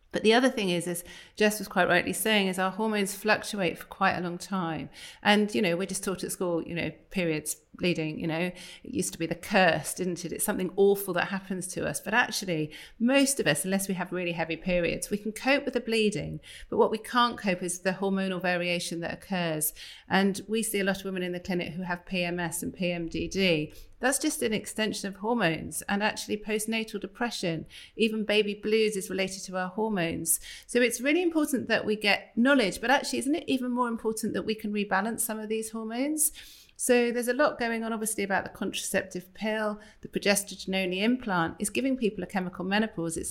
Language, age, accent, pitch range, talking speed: English, 40-59, British, 180-220 Hz, 215 wpm